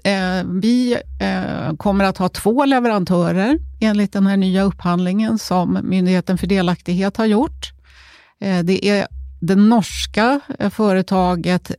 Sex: female